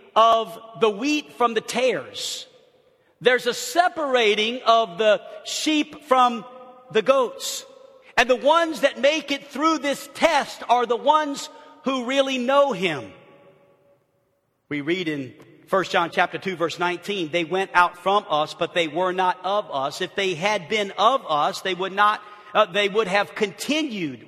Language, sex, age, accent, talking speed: English, male, 50-69, American, 155 wpm